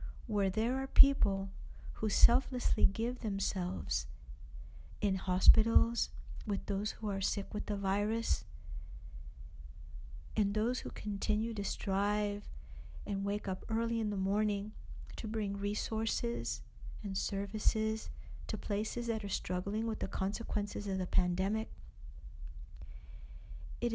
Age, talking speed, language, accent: 50-69, 120 wpm, English, American